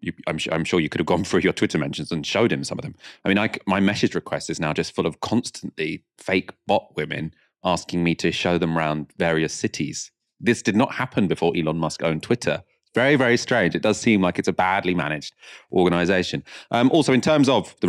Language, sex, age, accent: English, male, 30-49, British